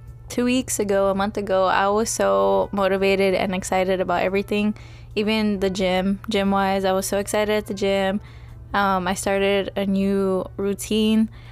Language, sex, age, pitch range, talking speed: English, female, 20-39, 185-215 Hz, 165 wpm